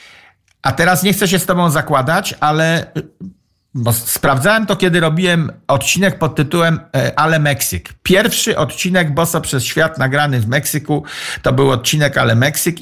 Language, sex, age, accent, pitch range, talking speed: Polish, male, 50-69, native, 130-175 Hz, 145 wpm